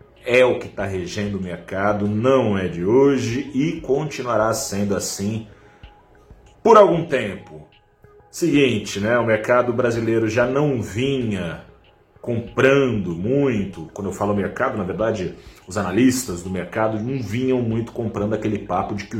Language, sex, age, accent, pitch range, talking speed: Portuguese, male, 40-59, Brazilian, 105-130 Hz, 145 wpm